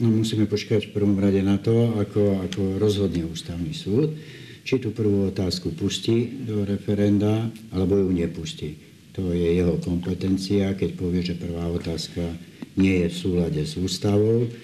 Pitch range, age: 85-105 Hz, 60-79